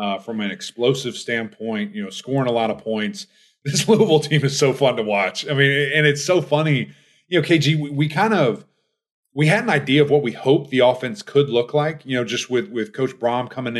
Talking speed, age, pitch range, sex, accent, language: 235 wpm, 30-49, 125-155 Hz, male, American, English